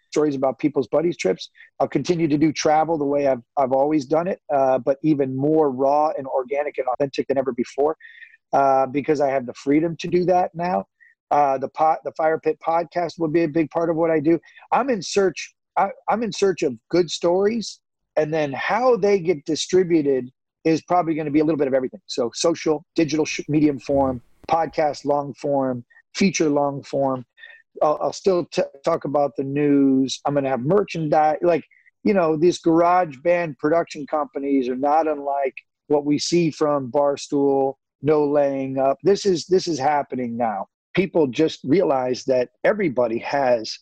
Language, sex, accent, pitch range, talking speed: English, male, American, 140-170 Hz, 185 wpm